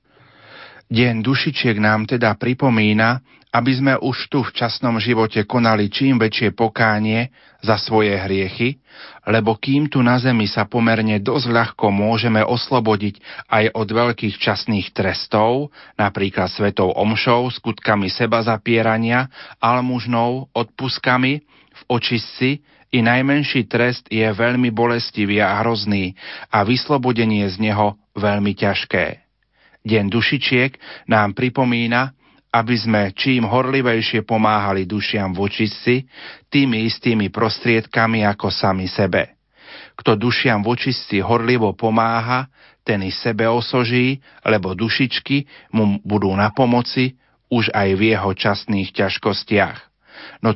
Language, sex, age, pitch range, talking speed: Slovak, male, 40-59, 105-125 Hz, 115 wpm